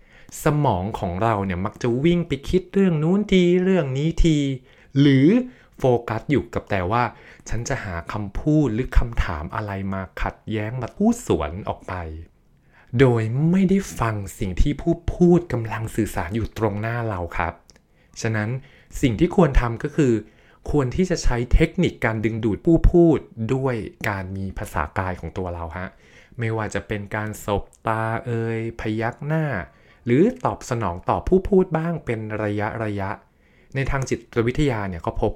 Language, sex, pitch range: Thai, male, 100-140 Hz